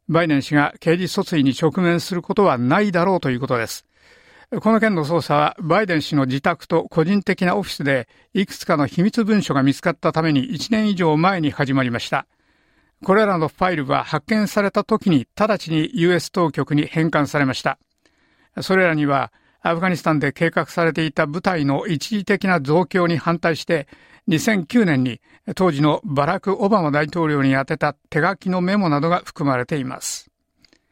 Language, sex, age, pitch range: Japanese, male, 60-79, 145-195 Hz